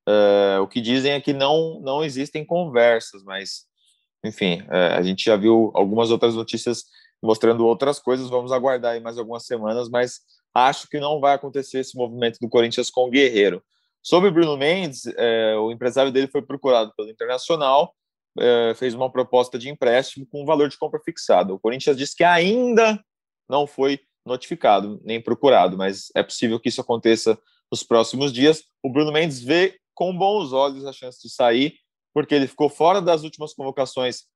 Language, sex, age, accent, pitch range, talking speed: Portuguese, male, 20-39, Brazilian, 120-150 Hz, 175 wpm